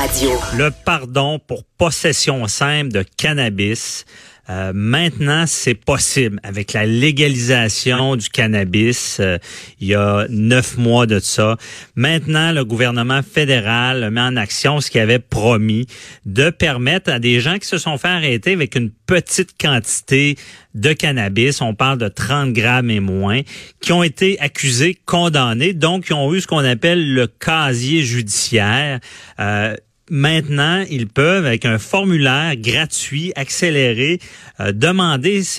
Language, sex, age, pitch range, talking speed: French, male, 40-59, 115-150 Hz, 140 wpm